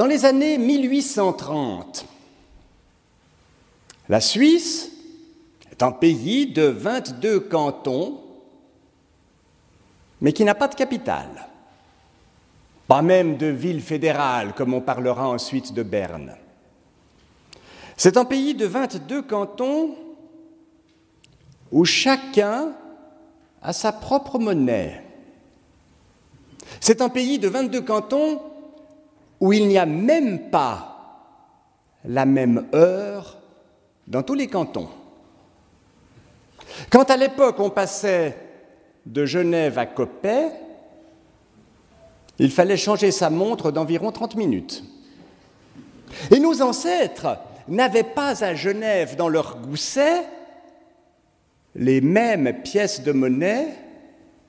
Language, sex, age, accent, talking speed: French, male, 50-69, French, 100 wpm